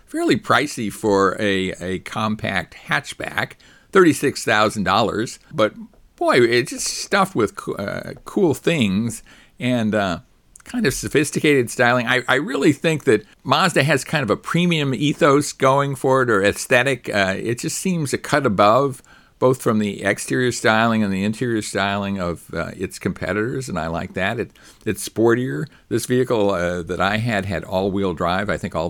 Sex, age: male, 60-79